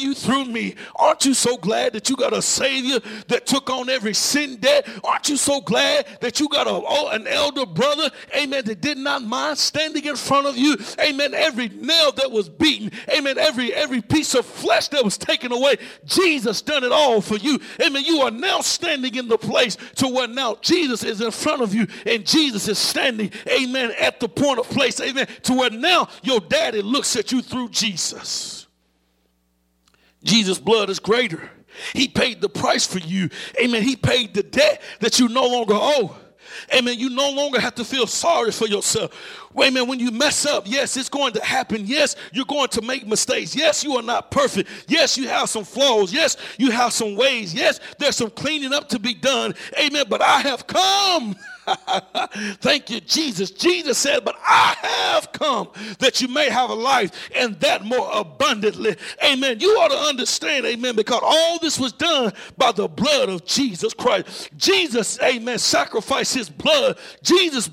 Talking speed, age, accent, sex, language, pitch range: 190 wpm, 50-69, American, male, English, 225-285 Hz